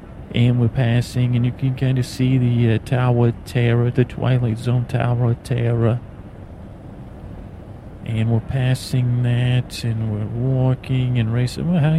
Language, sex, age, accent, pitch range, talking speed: English, male, 40-59, American, 110-125 Hz, 155 wpm